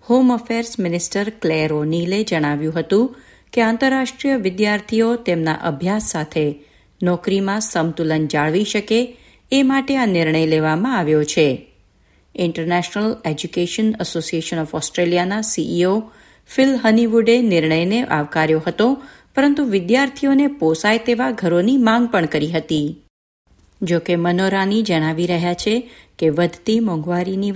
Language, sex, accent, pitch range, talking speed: Gujarati, female, native, 165-230 Hz, 115 wpm